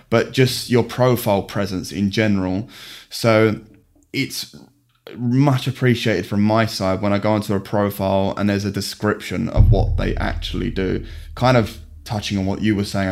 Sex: male